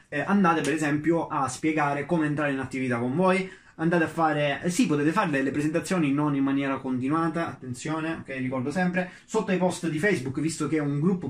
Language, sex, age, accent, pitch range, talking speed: Italian, male, 20-39, native, 135-165 Hz, 195 wpm